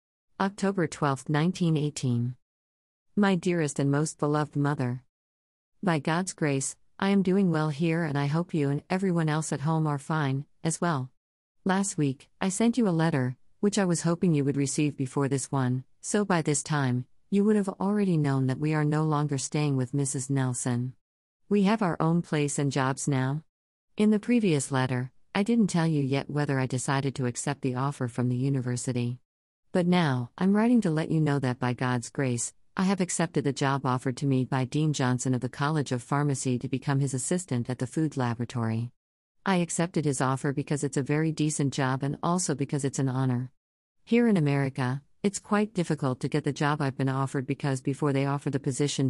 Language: English